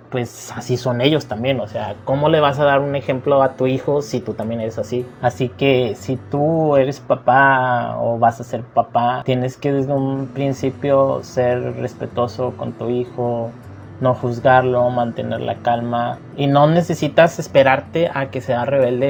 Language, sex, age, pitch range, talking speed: Spanish, male, 20-39, 120-140 Hz, 175 wpm